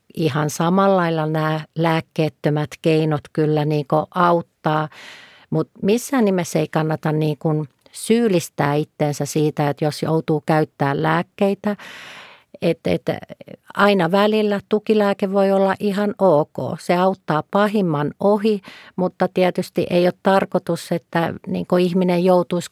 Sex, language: female, Finnish